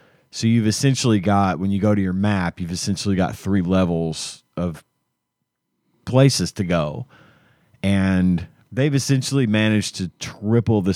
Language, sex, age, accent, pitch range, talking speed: English, male, 30-49, American, 90-110 Hz, 140 wpm